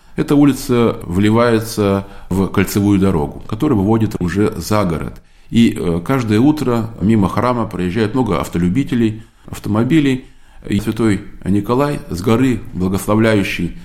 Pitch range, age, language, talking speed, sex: 90-115 Hz, 20-39, Russian, 115 wpm, male